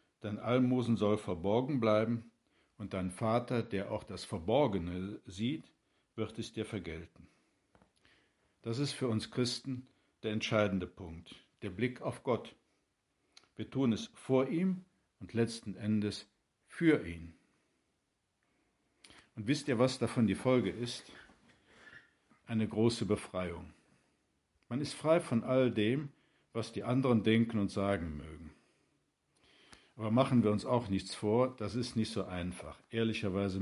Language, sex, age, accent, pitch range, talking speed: German, male, 60-79, German, 100-120 Hz, 135 wpm